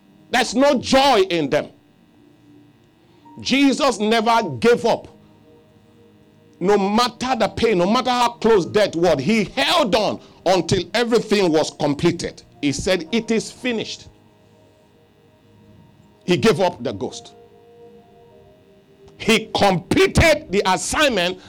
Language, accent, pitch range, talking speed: English, Nigerian, 200-270 Hz, 110 wpm